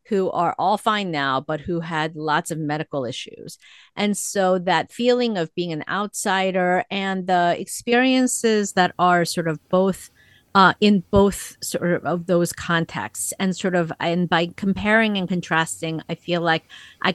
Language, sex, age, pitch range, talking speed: English, female, 50-69, 165-205 Hz, 170 wpm